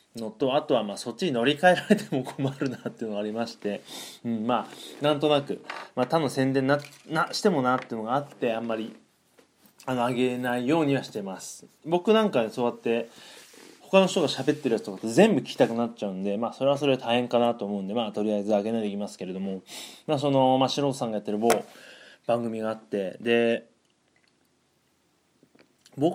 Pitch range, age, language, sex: 110-155 Hz, 20-39, Japanese, male